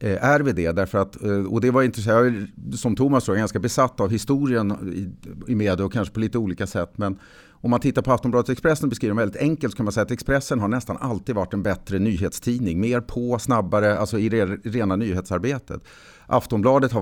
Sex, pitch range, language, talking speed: male, 95-120 Hz, English, 215 wpm